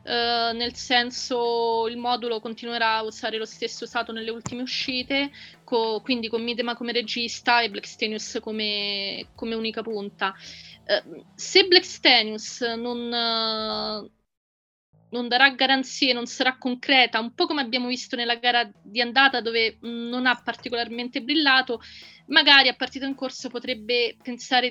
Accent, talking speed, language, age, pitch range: native, 140 wpm, Italian, 30-49, 215-250 Hz